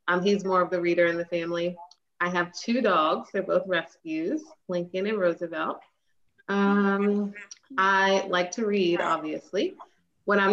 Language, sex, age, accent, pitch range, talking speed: English, female, 20-39, American, 180-215 Hz, 155 wpm